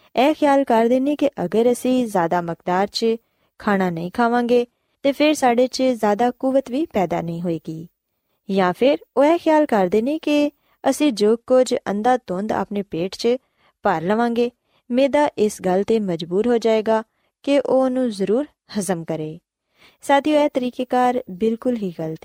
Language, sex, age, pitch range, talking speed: Punjabi, female, 20-39, 185-265 Hz, 165 wpm